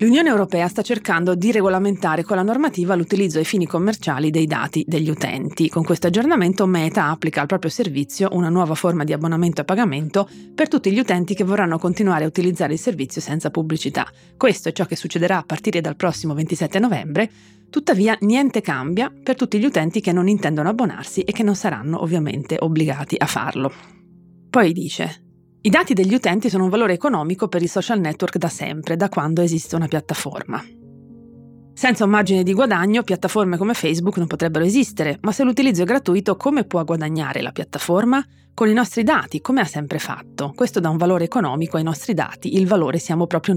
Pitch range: 160-210 Hz